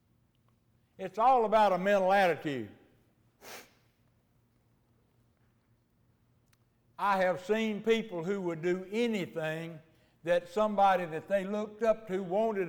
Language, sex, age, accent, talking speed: English, male, 60-79, American, 105 wpm